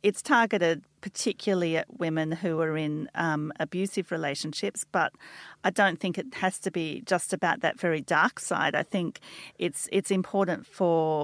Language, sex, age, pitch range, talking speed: English, female, 40-59, 165-195 Hz, 165 wpm